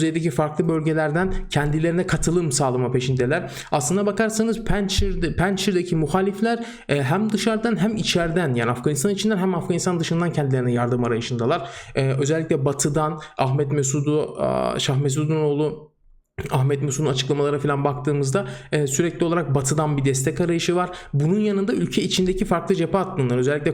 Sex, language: male, Turkish